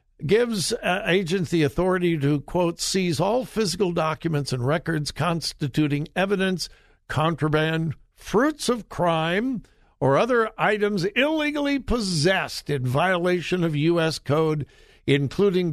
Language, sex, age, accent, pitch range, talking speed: English, male, 60-79, American, 145-185 Hz, 115 wpm